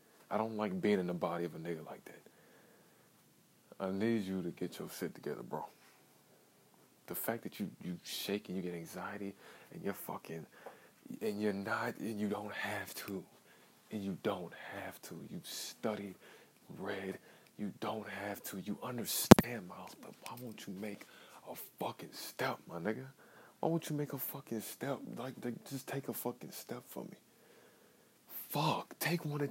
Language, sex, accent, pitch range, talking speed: English, male, American, 100-150 Hz, 175 wpm